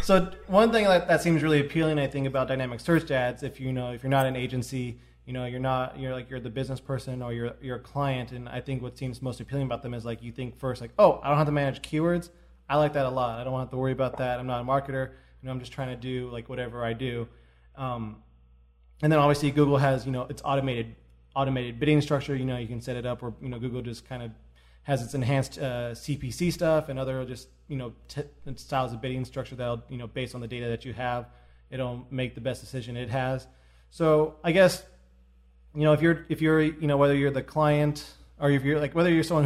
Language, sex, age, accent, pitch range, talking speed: English, male, 20-39, American, 125-145 Hz, 255 wpm